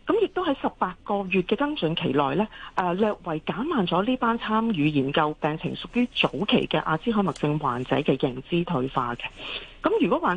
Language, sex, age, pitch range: Chinese, female, 40-59, 155-240 Hz